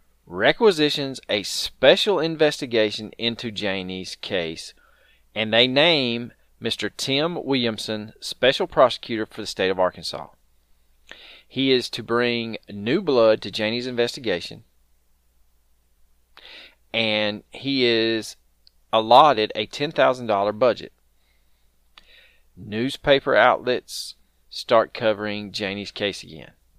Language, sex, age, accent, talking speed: English, male, 30-49, American, 95 wpm